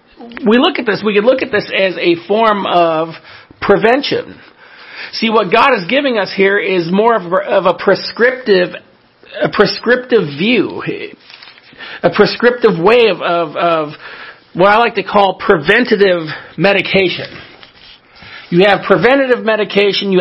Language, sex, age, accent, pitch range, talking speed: English, male, 50-69, American, 170-210 Hz, 145 wpm